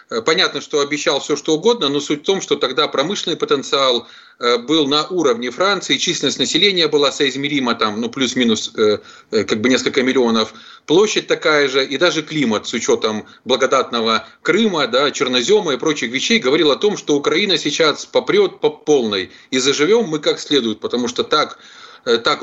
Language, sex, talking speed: Russian, male, 170 wpm